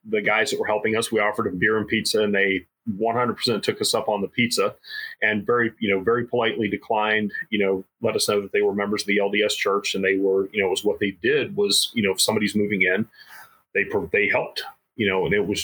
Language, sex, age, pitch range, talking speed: English, male, 30-49, 105-160 Hz, 255 wpm